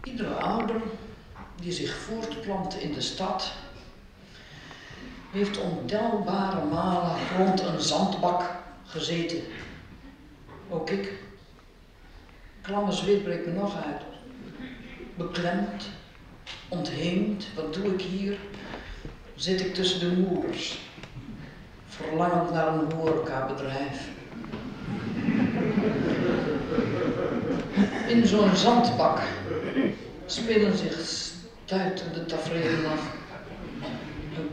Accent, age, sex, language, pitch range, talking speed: Dutch, 60-79, female, Dutch, 160-230 Hz, 80 wpm